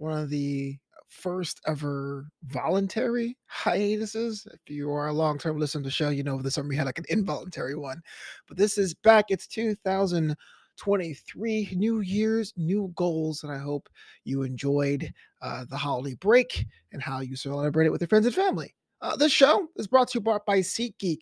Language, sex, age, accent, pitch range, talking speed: English, male, 30-49, American, 145-200 Hz, 180 wpm